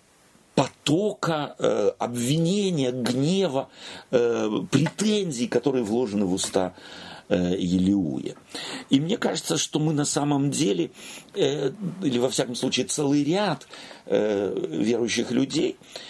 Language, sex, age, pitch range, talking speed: Russian, male, 50-69, 125-165 Hz, 110 wpm